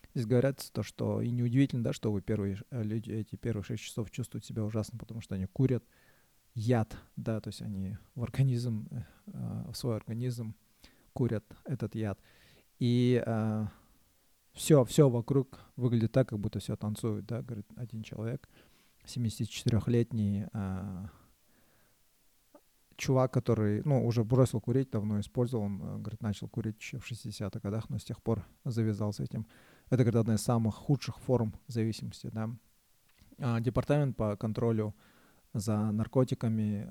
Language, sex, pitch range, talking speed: Russian, male, 105-125 Hz, 145 wpm